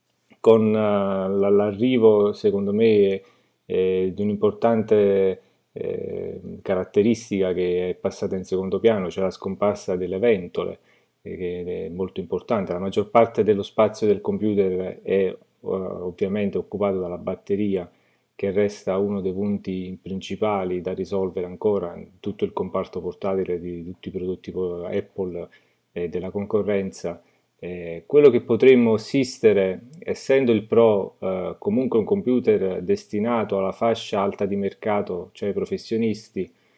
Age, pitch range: 30-49, 95-110 Hz